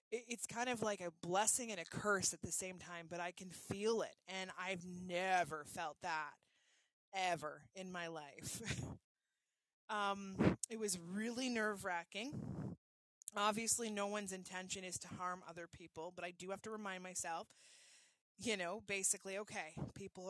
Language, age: English, 20-39